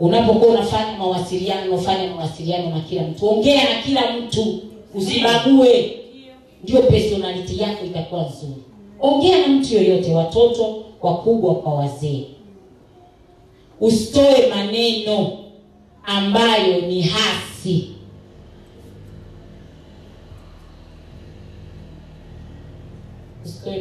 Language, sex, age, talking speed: Swahili, female, 40-59, 85 wpm